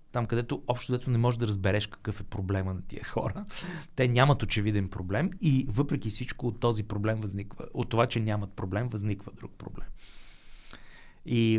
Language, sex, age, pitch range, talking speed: Bulgarian, male, 30-49, 100-125 Hz, 170 wpm